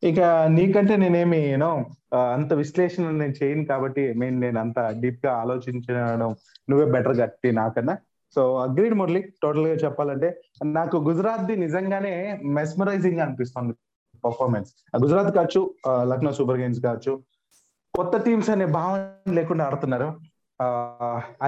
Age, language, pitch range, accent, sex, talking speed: 30-49, Telugu, 130-170 Hz, native, male, 125 wpm